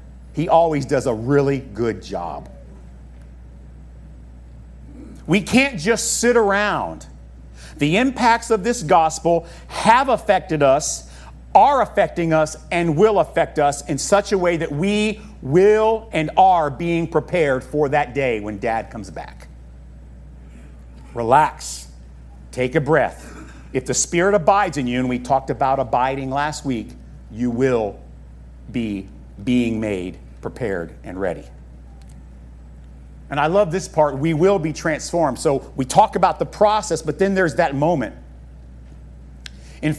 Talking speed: 135 wpm